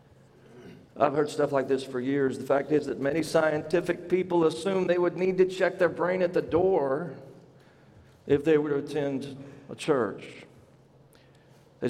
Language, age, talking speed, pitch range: English, 50-69, 165 wpm, 130-170 Hz